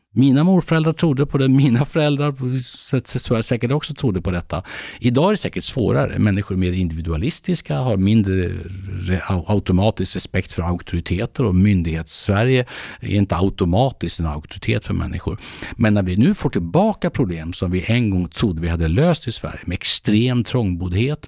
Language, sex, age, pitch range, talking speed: Swedish, male, 60-79, 90-125 Hz, 160 wpm